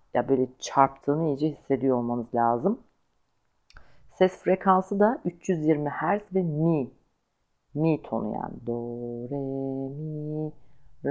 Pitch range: 130-155 Hz